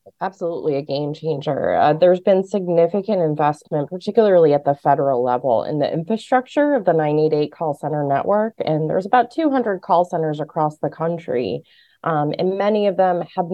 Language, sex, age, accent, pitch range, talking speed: English, female, 20-39, American, 150-180 Hz, 170 wpm